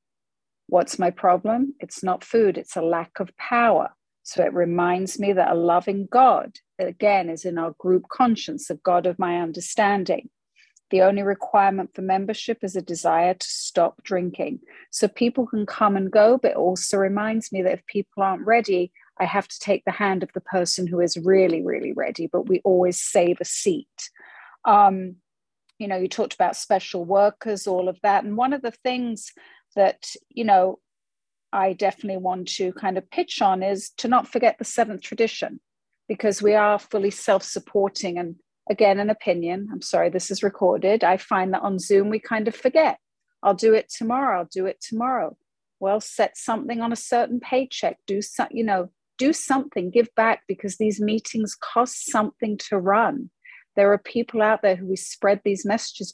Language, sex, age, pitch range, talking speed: English, female, 40-59, 185-230 Hz, 185 wpm